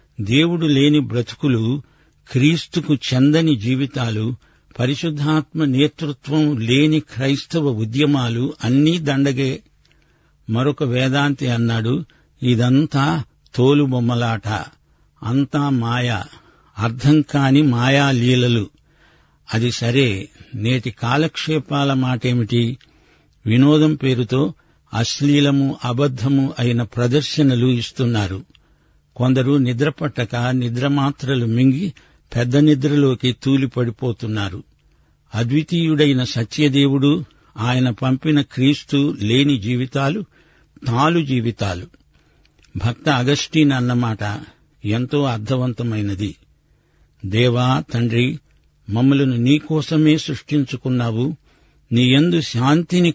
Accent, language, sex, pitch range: native, Telugu, male, 120-145 Hz